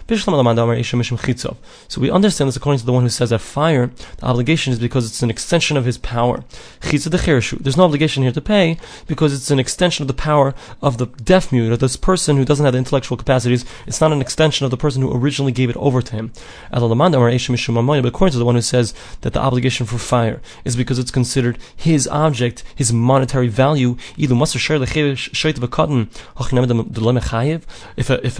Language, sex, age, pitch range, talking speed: English, male, 20-39, 120-150 Hz, 180 wpm